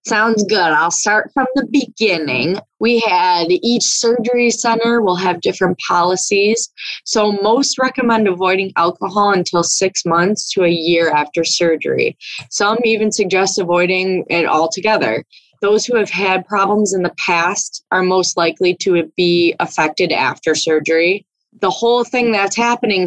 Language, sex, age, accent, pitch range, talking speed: English, female, 20-39, American, 175-220 Hz, 145 wpm